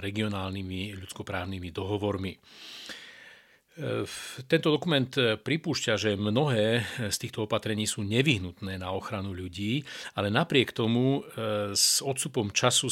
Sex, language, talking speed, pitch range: male, Slovak, 100 wpm, 100-120 Hz